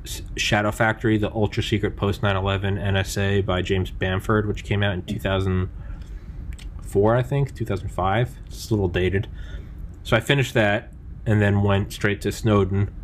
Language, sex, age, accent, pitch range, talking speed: English, male, 20-39, American, 95-110 Hz, 155 wpm